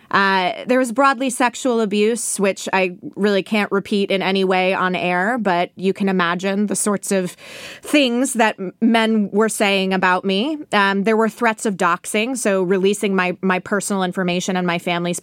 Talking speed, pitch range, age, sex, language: 175 wpm, 180-225 Hz, 20-39, female, English